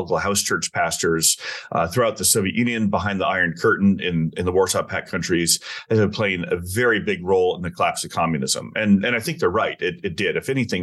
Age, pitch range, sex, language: 30-49, 95-115 Hz, male, English